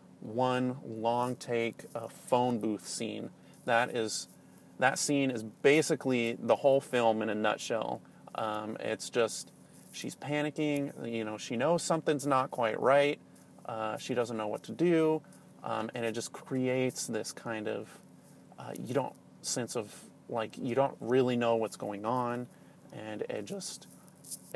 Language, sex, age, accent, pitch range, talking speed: English, male, 30-49, American, 110-130 Hz, 155 wpm